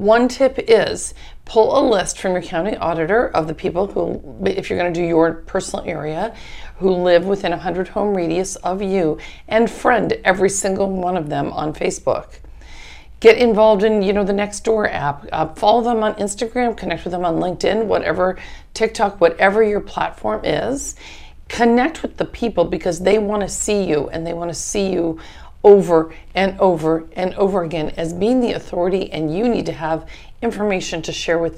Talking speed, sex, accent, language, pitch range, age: 190 wpm, female, American, English, 165-210 Hz, 50-69